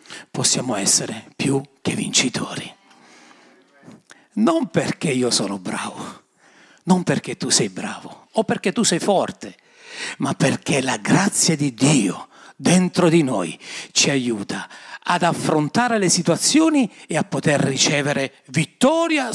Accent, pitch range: native, 205-285 Hz